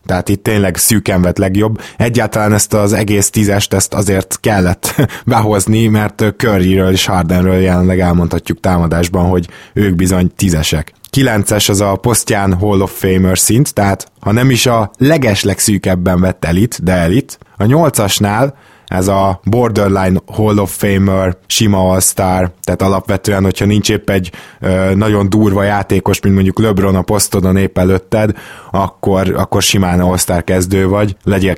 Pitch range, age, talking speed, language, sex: 95-105 Hz, 20-39, 150 wpm, Hungarian, male